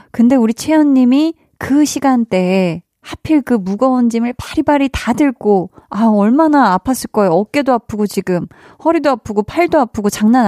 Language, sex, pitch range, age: Korean, female, 195-260 Hz, 20-39